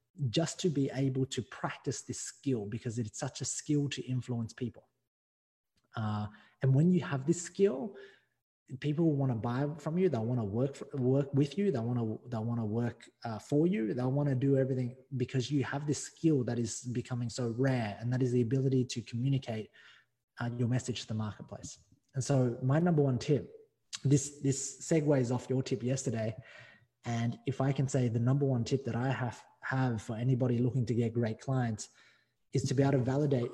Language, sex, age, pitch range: English, male, 20-39, 120-135 Hz